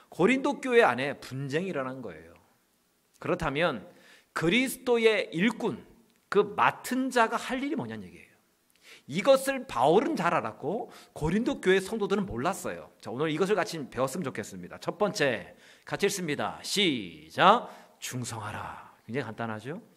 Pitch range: 130-210 Hz